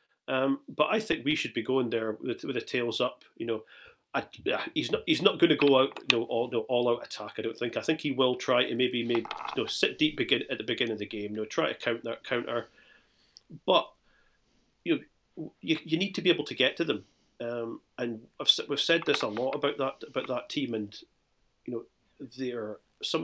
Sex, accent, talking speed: male, British, 245 wpm